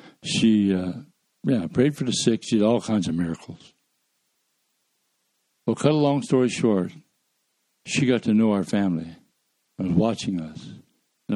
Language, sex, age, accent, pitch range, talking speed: English, male, 60-79, American, 95-125 Hz, 160 wpm